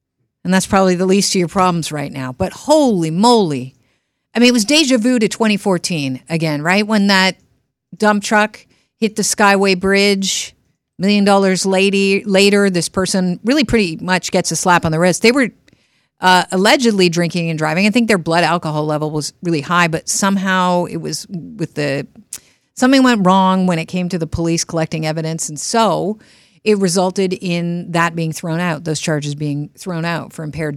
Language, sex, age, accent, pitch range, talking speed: English, female, 50-69, American, 160-200 Hz, 185 wpm